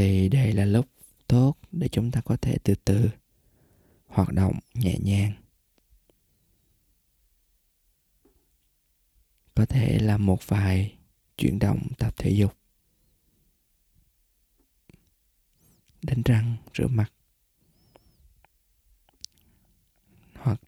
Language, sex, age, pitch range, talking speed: Vietnamese, male, 20-39, 85-120 Hz, 90 wpm